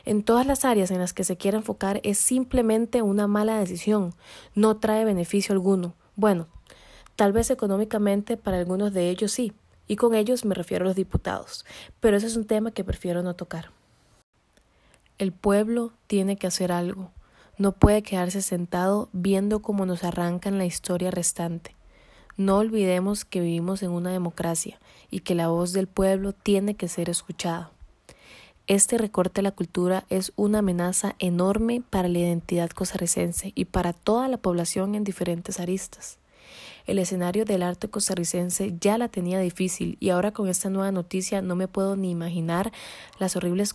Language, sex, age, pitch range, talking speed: Spanish, female, 20-39, 180-210 Hz, 165 wpm